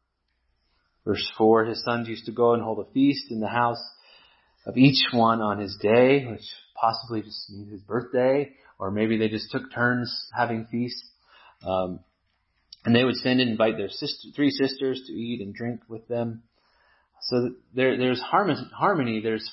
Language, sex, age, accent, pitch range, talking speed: English, male, 30-49, American, 105-125 Hz, 165 wpm